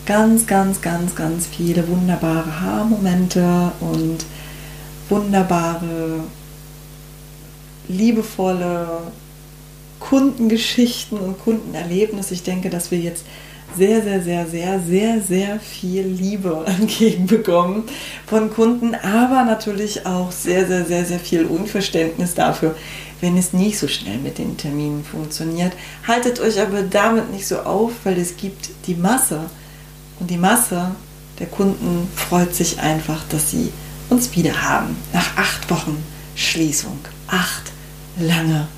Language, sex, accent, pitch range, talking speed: German, female, German, 150-210 Hz, 125 wpm